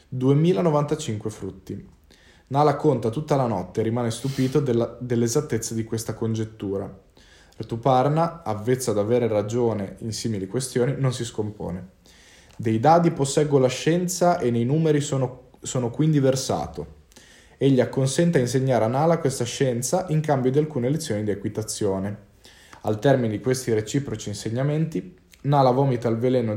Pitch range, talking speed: 110-140 Hz, 140 wpm